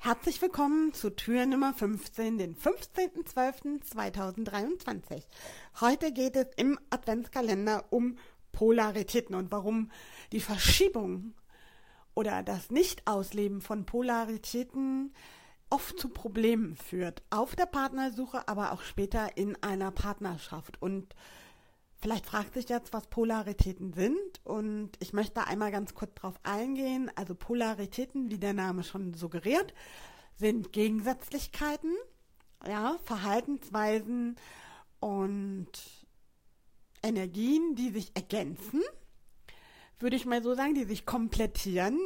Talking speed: 110 wpm